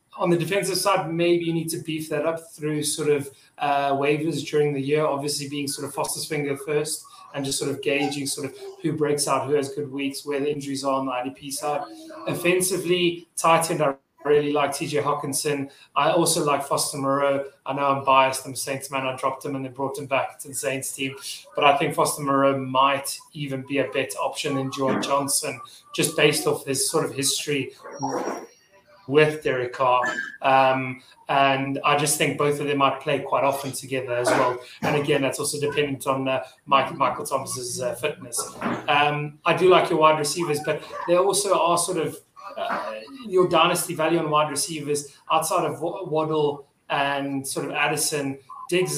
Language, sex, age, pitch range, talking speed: English, male, 20-39, 135-155 Hz, 195 wpm